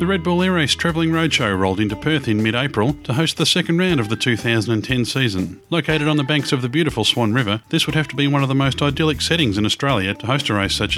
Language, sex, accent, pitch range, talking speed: English, male, Australian, 105-140 Hz, 265 wpm